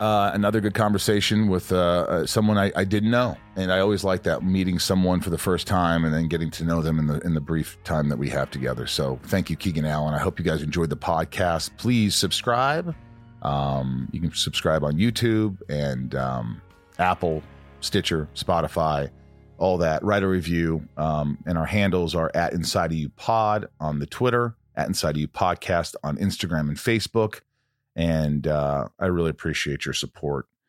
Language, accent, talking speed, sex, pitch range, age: English, American, 190 wpm, male, 75-105 Hz, 40-59